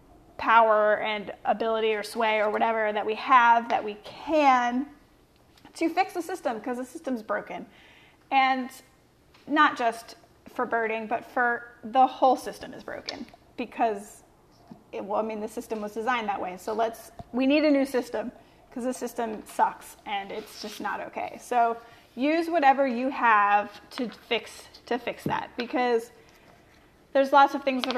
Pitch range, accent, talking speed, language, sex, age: 215-255 Hz, American, 165 wpm, English, female, 30-49